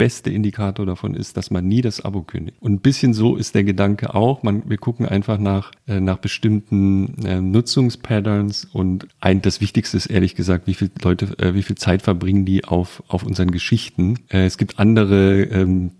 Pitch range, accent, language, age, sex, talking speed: 95-110 Hz, German, German, 30-49, male, 200 wpm